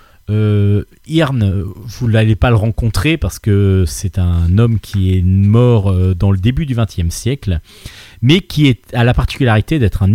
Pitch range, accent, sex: 95-125 Hz, French, male